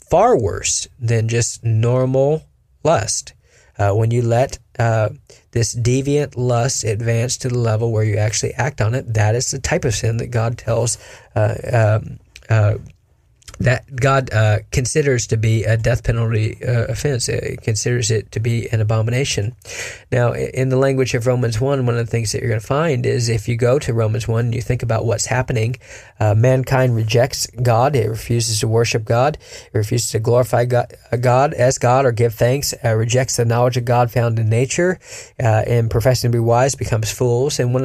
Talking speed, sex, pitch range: 190 wpm, male, 115-130 Hz